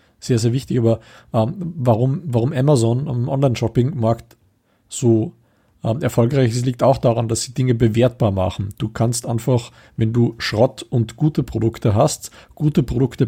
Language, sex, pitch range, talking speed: German, male, 115-130 Hz, 155 wpm